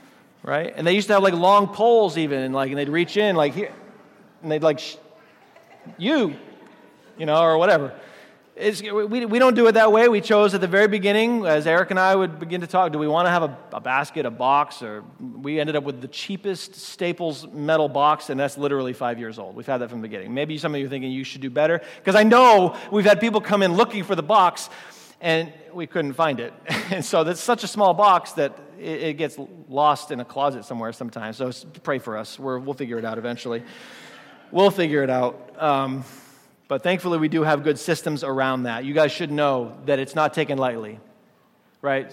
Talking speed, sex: 220 wpm, male